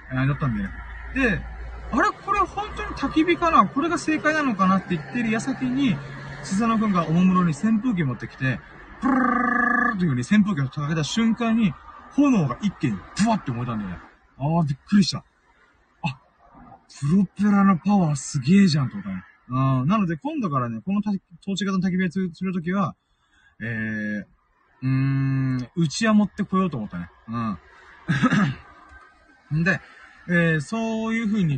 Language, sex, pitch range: Japanese, male, 130-215 Hz